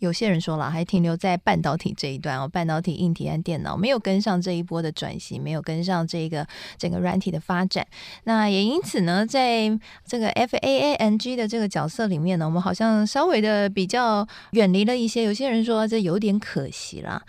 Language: Chinese